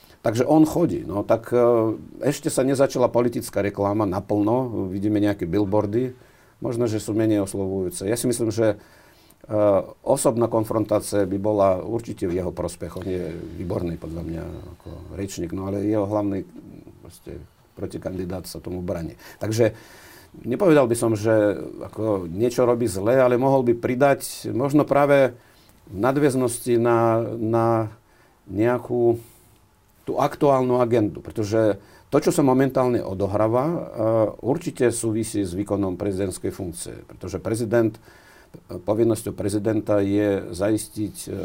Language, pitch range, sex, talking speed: Slovak, 100-120 Hz, male, 125 wpm